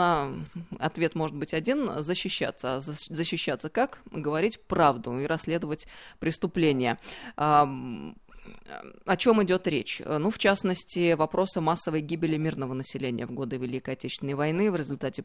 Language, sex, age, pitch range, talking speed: Russian, female, 20-39, 145-190 Hz, 140 wpm